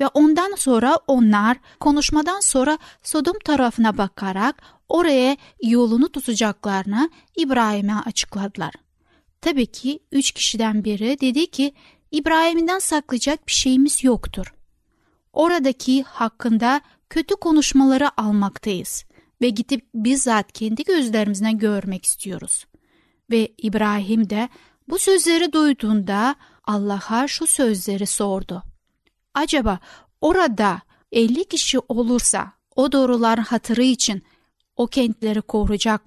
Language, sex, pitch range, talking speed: Turkish, female, 220-290 Hz, 100 wpm